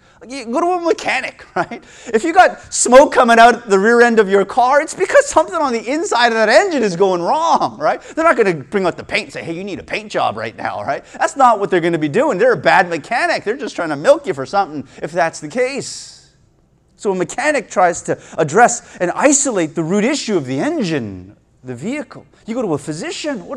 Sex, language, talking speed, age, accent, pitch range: male, English, 245 wpm, 30-49, American, 170-245 Hz